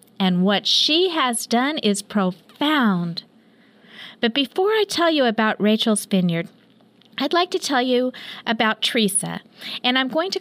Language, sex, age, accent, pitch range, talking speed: English, female, 40-59, American, 200-245 Hz, 150 wpm